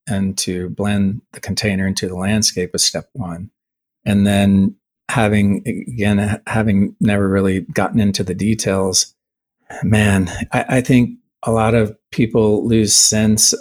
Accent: American